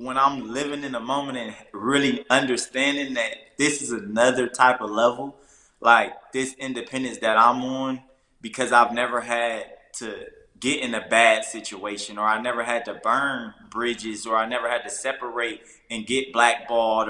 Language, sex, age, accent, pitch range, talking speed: English, male, 20-39, American, 120-140 Hz, 170 wpm